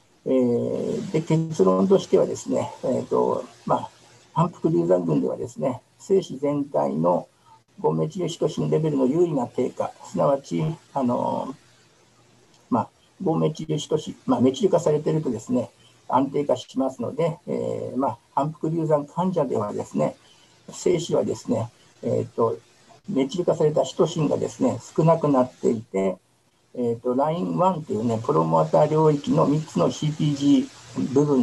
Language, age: Japanese, 60-79